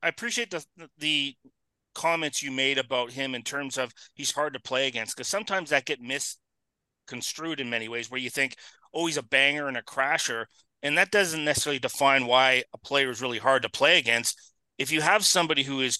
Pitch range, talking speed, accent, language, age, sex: 130-155 Hz, 205 wpm, American, English, 40-59, male